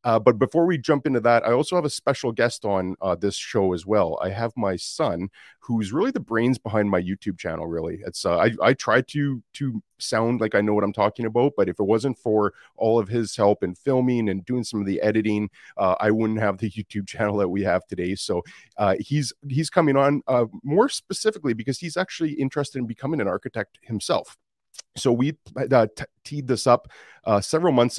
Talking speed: 220 wpm